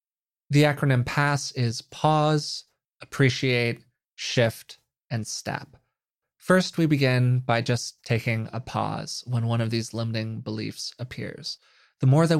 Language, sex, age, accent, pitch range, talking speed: English, male, 20-39, American, 115-150 Hz, 130 wpm